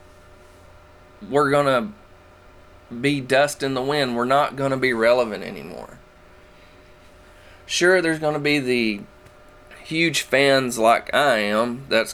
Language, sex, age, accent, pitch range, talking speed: English, male, 30-49, American, 105-140 Hz, 120 wpm